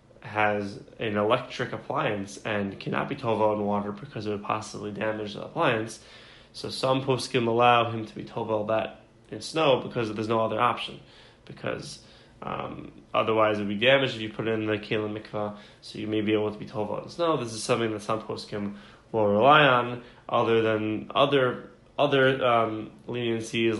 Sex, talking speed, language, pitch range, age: male, 185 wpm, English, 105-125 Hz, 20-39